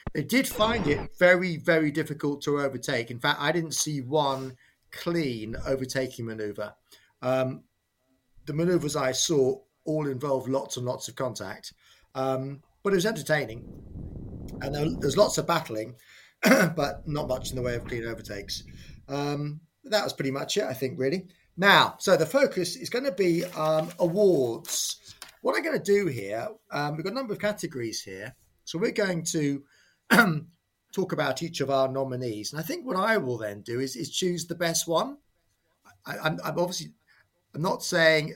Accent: British